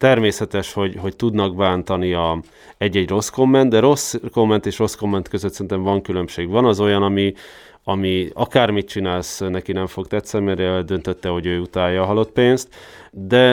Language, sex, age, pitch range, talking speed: Hungarian, male, 30-49, 95-115 Hz, 175 wpm